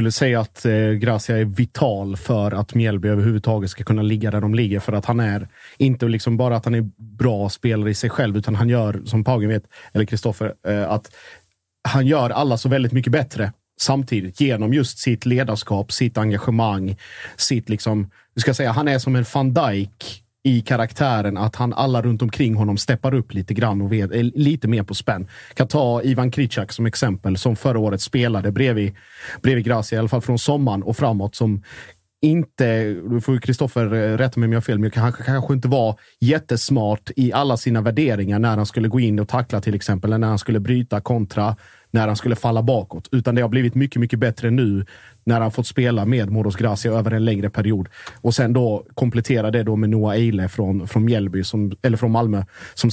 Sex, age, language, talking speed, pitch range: male, 30-49, Swedish, 210 wpm, 105-125 Hz